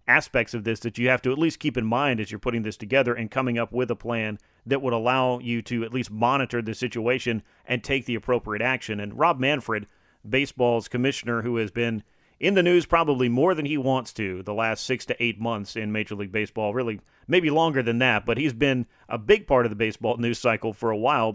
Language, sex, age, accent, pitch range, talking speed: English, male, 40-59, American, 115-135 Hz, 235 wpm